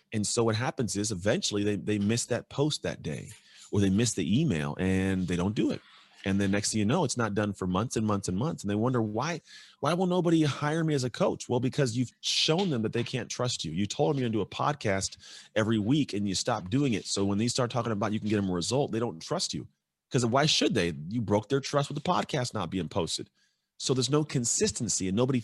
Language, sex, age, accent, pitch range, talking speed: English, male, 30-49, American, 95-125 Hz, 265 wpm